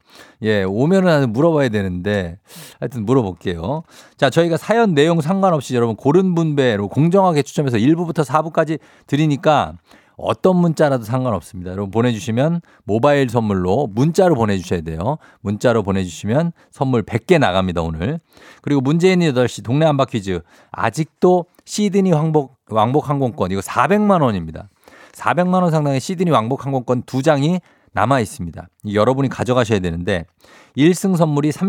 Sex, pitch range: male, 105-155 Hz